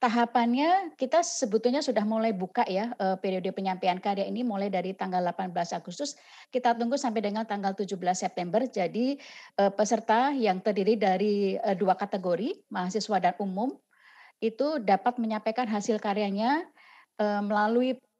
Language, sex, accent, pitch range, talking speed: Indonesian, female, native, 190-240 Hz, 130 wpm